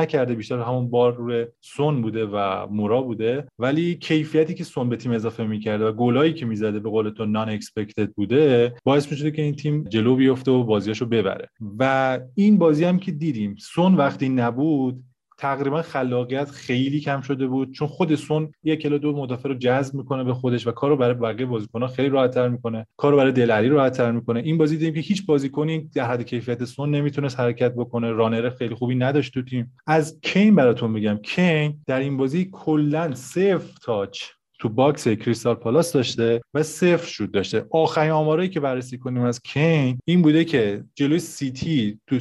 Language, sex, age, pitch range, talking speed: Persian, male, 20-39, 120-150 Hz, 190 wpm